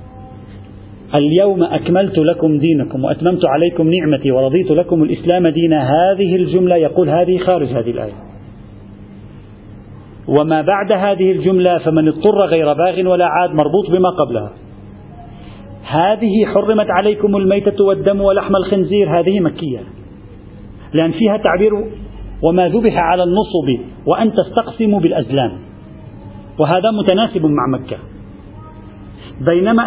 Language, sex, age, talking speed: Arabic, male, 40-59, 110 wpm